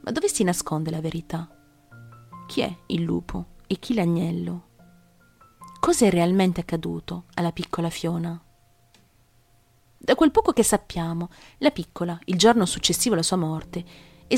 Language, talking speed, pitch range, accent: Italian, 140 wpm, 170-240 Hz, native